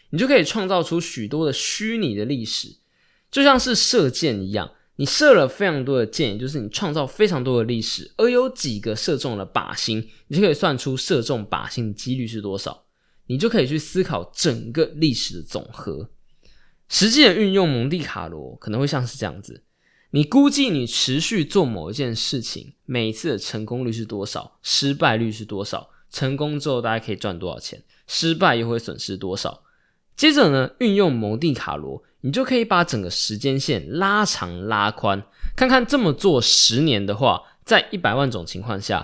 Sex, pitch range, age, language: male, 110-175 Hz, 20-39, Chinese